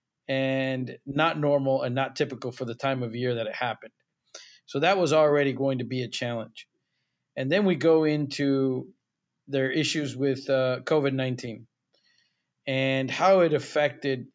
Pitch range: 130-150 Hz